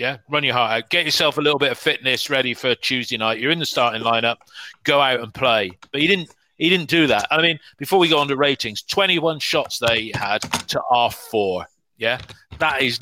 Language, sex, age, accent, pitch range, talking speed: English, male, 40-59, British, 110-135 Hz, 225 wpm